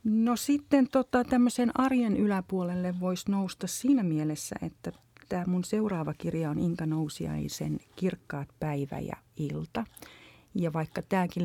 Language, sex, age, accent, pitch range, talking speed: Finnish, female, 40-59, native, 140-175 Hz, 130 wpm